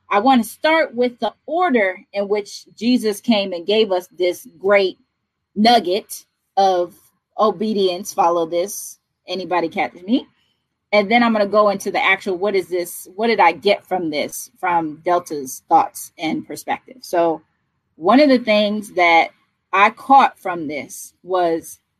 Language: English